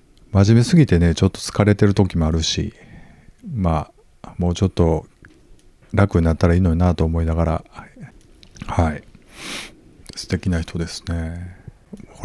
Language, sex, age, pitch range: Japanese, male, 50-69, 80-105 Hz